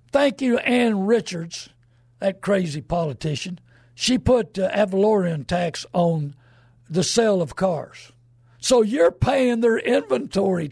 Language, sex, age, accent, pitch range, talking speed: English, male, 60-79, American, 155-220 Hz, 125 wpm